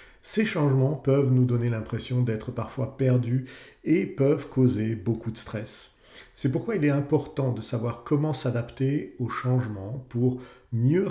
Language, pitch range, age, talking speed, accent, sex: French, 115-140 Hz, 50-69, 150 wpm, French, male